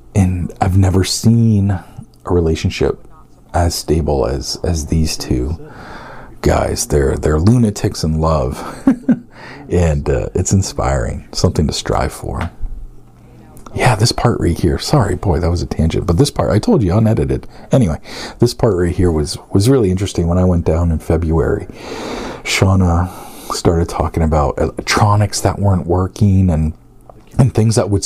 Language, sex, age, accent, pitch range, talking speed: English, male, 40-59, American, 85-110 Hz, 155 wpm